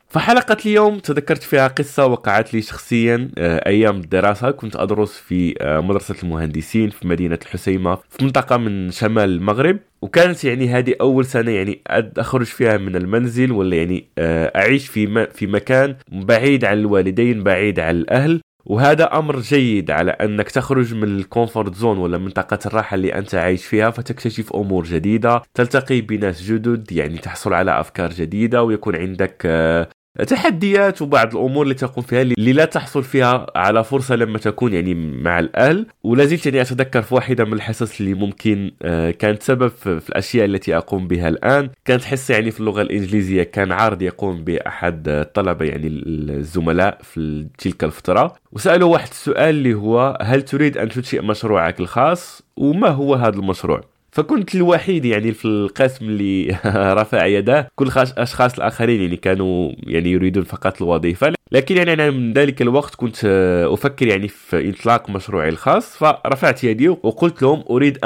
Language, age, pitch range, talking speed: Arabic, 20-39, 95-130 Hz, 155 wpm